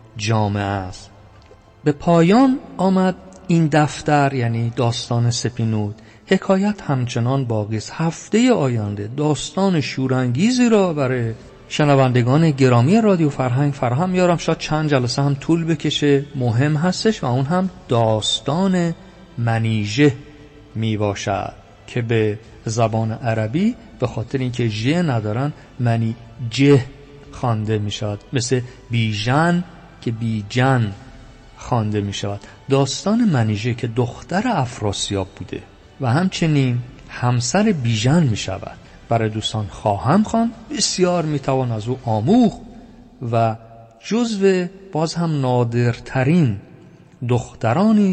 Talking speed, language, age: 110 wpm, Persian, 50-69